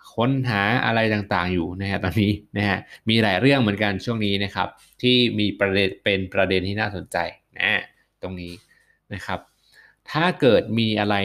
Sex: male